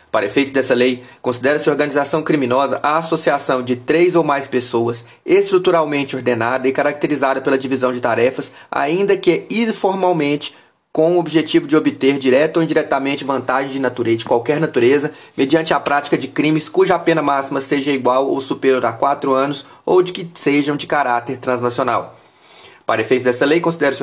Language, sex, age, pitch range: Portuguese, male, 30-49, 125-155 Hz